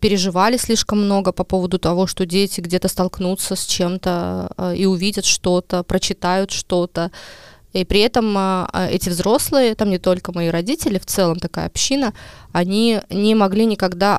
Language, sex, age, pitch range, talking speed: Russian, female, 20-39, 180-210 Hz, 150 wpm